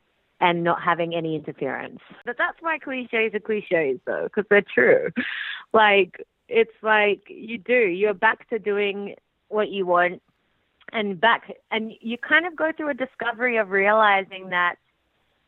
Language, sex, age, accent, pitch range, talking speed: English, female, 30-49, Australian, 180-230 Hz, 155 wpm